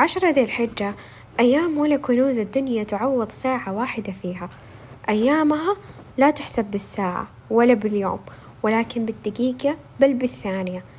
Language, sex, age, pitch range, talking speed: Arabic, female, 10-29, 210-265 Hz, 115 wpm